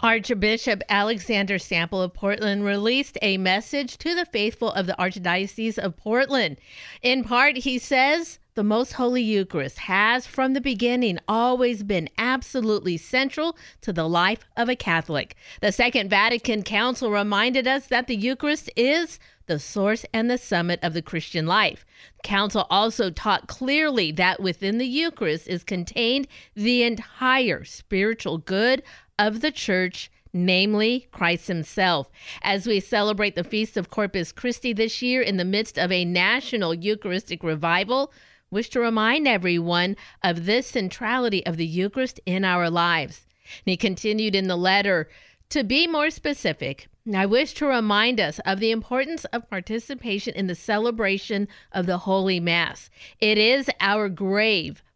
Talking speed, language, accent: 155 wpm, English, American